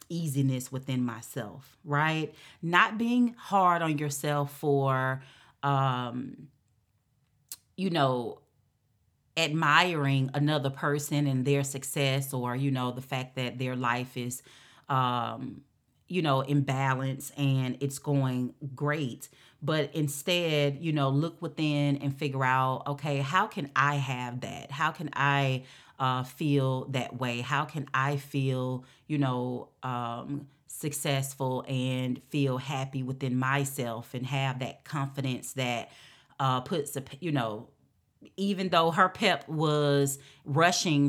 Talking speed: 125 wpm